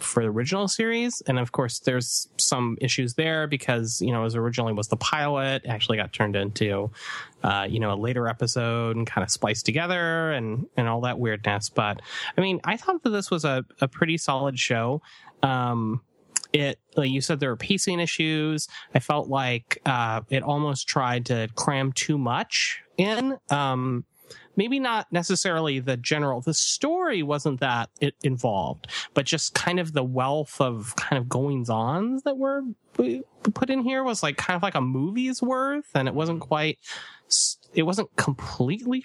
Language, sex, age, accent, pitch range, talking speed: English, male, 30-49, American, 120-180 Hz, 175 wpm